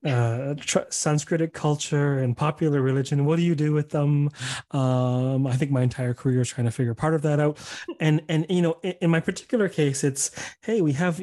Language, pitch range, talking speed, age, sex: English, 120-150 Hz, 215 wpm, 30-49, male